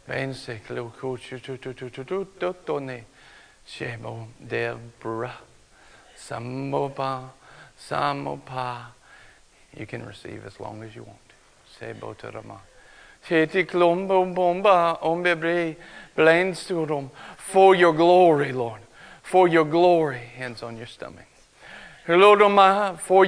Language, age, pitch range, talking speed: English, 60-79, 120-175 Hz, 50 wpm